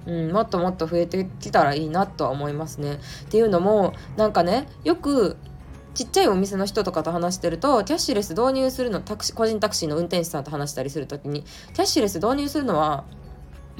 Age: 20-39